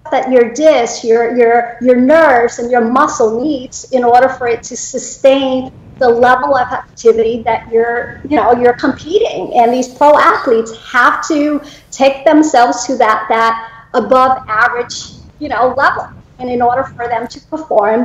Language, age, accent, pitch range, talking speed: English, 50-69, American, 240-295 Hz, 165 wpm